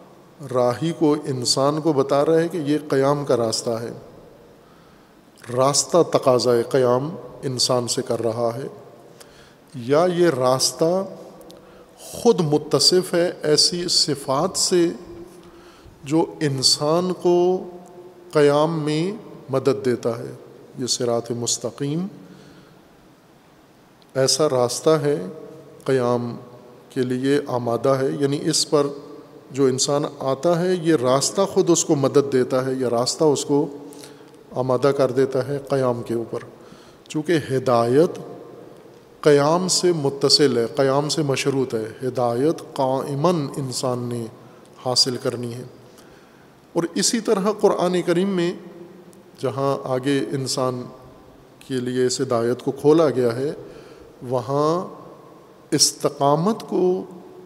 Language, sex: Urdu, male